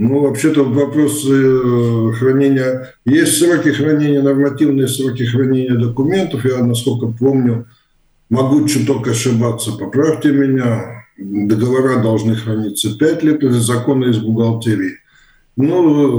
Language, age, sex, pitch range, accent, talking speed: Russian, 60-79, male, 115-140 Hz, native, 115 wpm